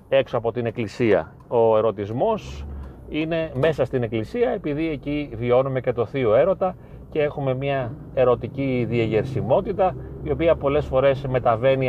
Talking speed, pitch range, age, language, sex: 135 wpm, 120-140 Hz, 30-49, Greek, male